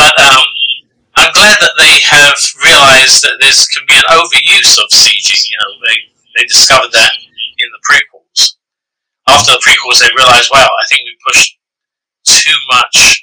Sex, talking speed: male, 170 wpm